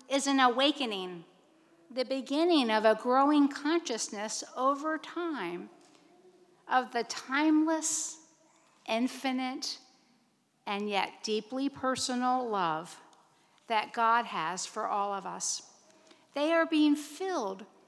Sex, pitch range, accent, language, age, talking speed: female, 225-295 Hz, American, English, 50-69, 105 wpm